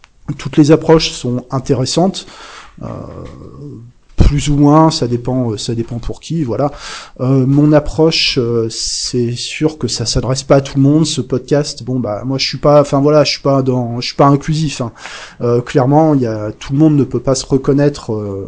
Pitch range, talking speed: 120-145 Hz, 200 wpm